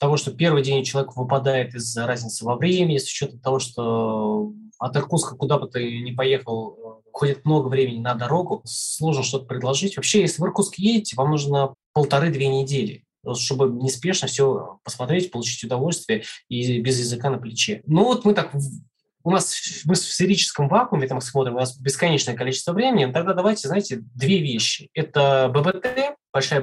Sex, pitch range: male, 130-185 Hz